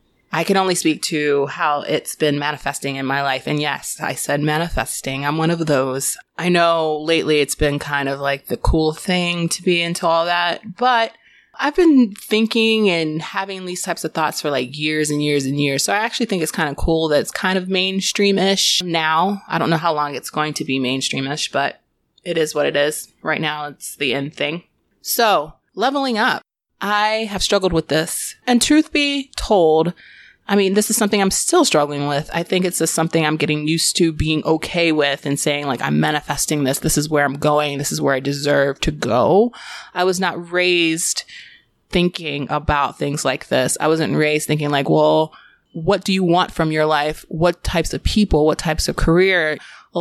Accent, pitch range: American, 150-185 Hz